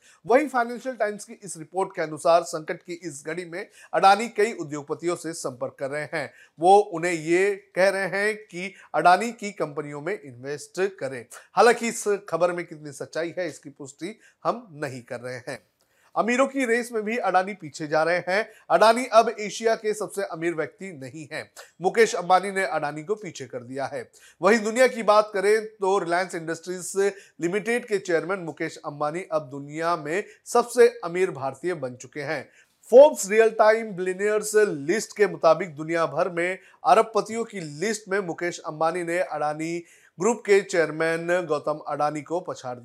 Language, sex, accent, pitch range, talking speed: Hindi, male, native, 160-205 Hz, 170 wpm